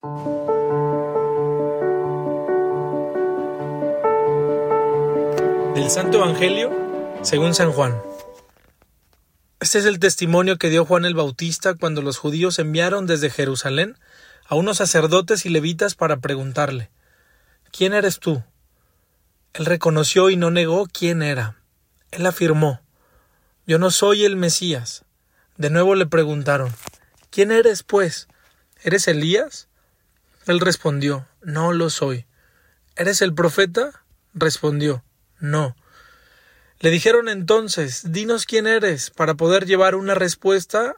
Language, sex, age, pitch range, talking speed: Spanish, male, 30-49, 135-185 Hz, 110 wpm